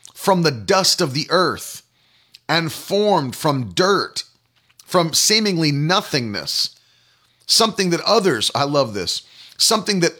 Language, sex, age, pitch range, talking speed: English, male, 40-59, 130-180 Hz, 125 wpm